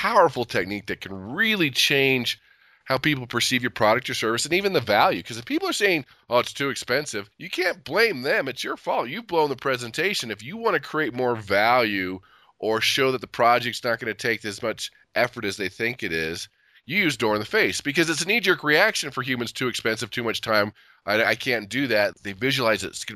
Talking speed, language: 230 wpm, English